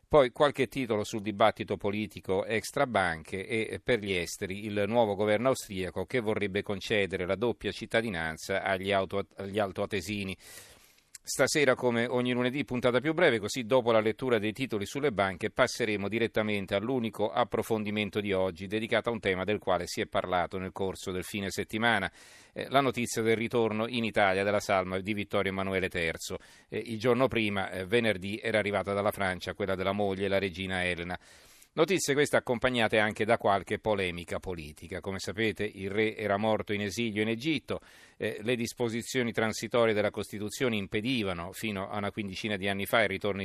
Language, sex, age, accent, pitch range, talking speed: Italian, male, 40-59, native, 95-115 Hz, 170 wpm